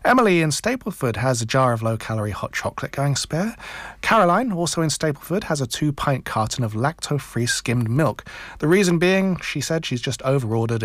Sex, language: male, English